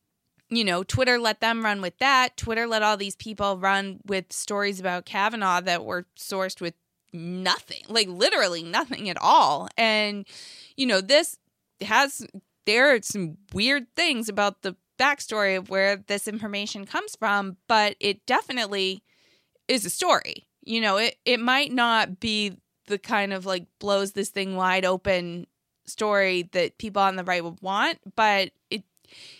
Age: 20-39